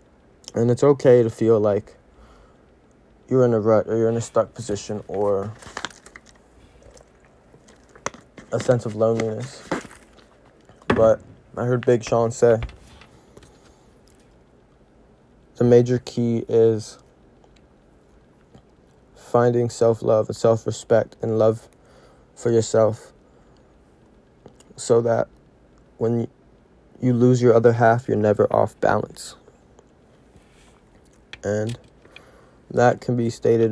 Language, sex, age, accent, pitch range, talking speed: English, male, 20-39, American, 105-115 Hz, 100 wpm